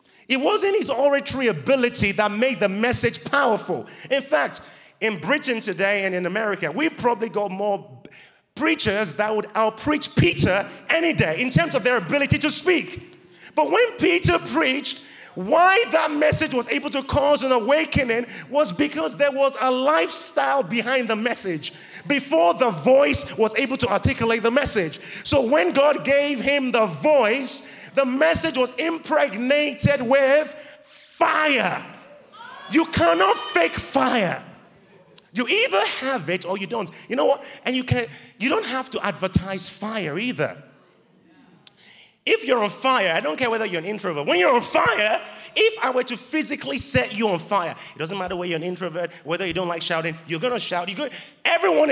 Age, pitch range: 30-49, 215-295 Hz